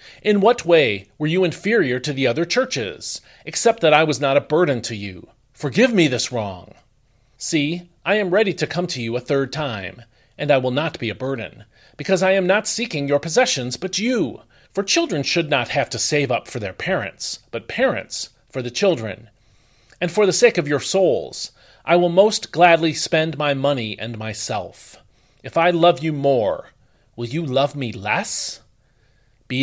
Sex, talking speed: male, 190 wpm